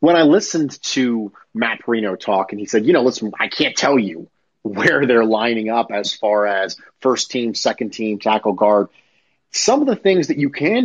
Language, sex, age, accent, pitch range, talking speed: English, male, 30-49, American, 115-175 Hz, 205 wpm